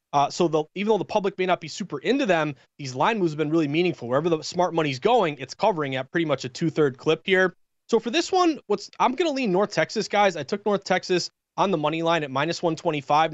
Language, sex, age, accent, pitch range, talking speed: English, male, 20-39, American, 150-190 Hz, 255 wpm